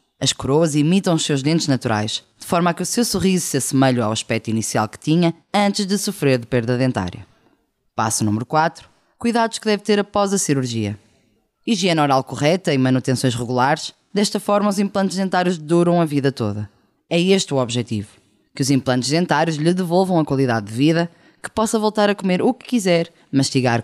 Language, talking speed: Portuguese, 190 wpm